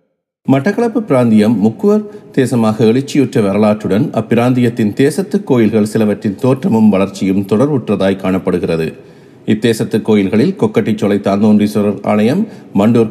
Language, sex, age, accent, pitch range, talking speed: Tamil, male, 50-69, native, 105-155 Hz, 85 wpm